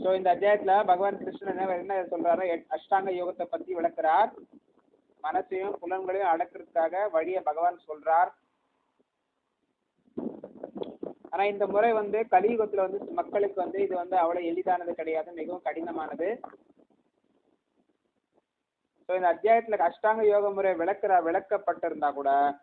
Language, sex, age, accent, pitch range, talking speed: Tamil, male, 30-49, native, 155-190 Hz, 45 wpm